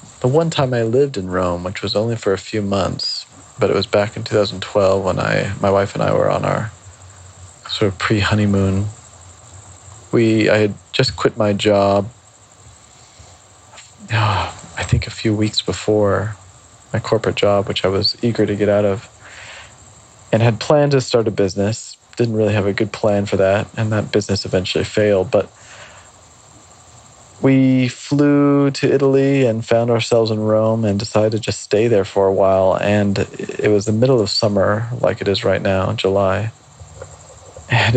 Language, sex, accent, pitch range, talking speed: English, male, American, 95-110 Hz, 175 wpm